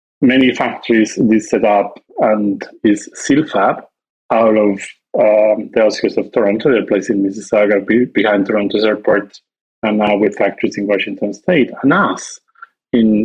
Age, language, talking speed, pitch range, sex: 30-49, English, 145 wpm, 105-120 Hz, male